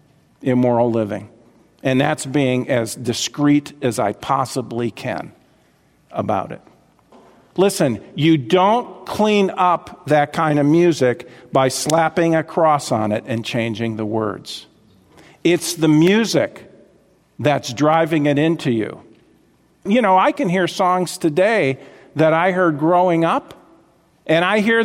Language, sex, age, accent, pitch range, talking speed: English, male, 50-69, American, 135-200 Hz, 135 wpm